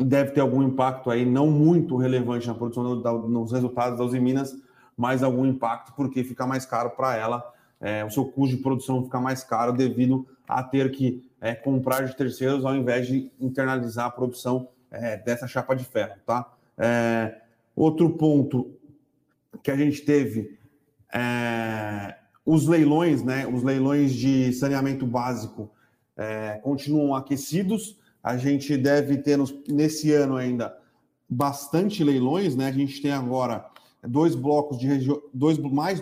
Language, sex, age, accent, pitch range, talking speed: Portuguese, male, 30-49, Brazilian, 125-145 Hz, 155 wpm